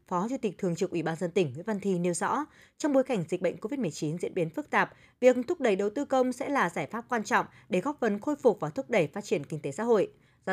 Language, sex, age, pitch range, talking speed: Vietnamese, female, 20-39, 175-235 Hz, 290 wpm